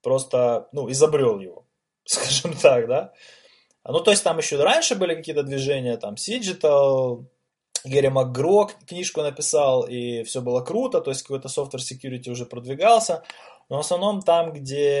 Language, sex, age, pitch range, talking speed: Ukrainian, male, 20-39, 120-160 Hz, 150 wpm